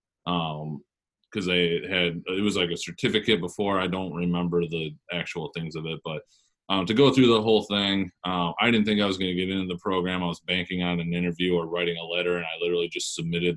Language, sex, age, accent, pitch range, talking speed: English, male, 20-39, American, 85-95 Hz, 225 wpm